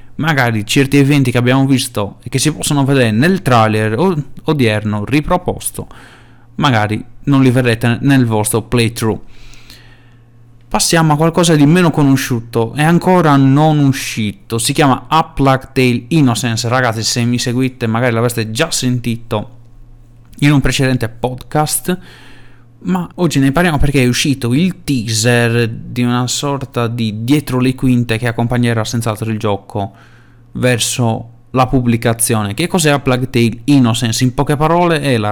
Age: 30-49